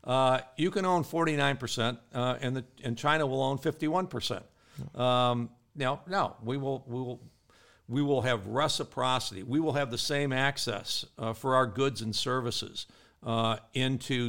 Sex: male